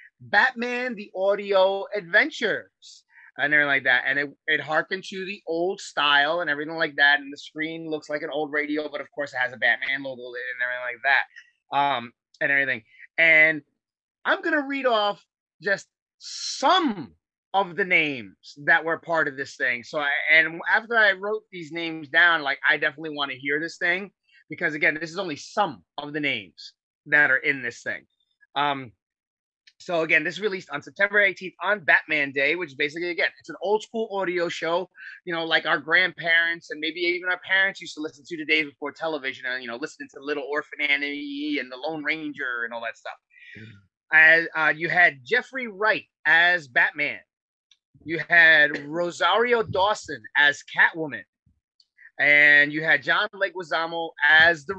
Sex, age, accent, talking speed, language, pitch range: male, 30-49, American, 185 wpm, English, 145-190 Hz